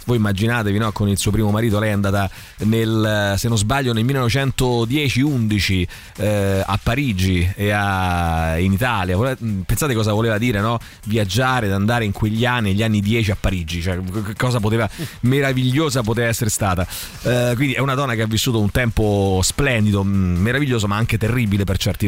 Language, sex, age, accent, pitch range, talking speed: Italian, male, 30-49, native, 110-160 Hz, 175 wpm